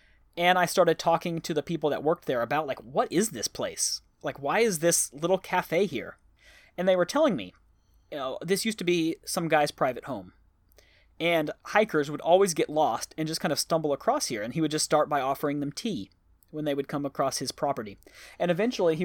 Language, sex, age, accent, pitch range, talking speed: English, male, 30-49, American, 145-180 Hz, 220 wpm